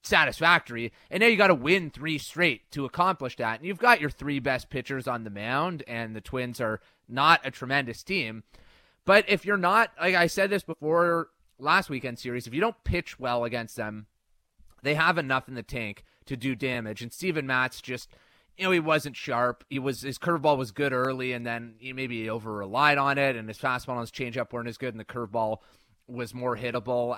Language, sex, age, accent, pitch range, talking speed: English, male, 30-49, American, 115-155 Hz, 215 wpm